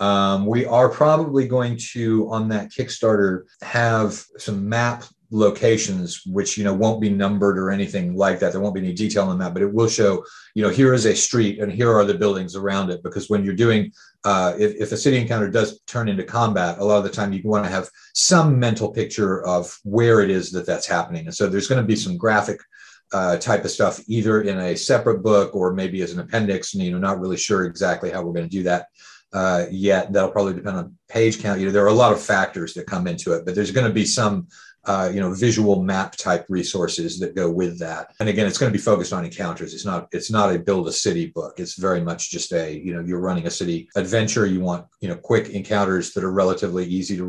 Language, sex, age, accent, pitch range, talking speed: English, male, 40-59, American, 95-110 Hz, 245 wpm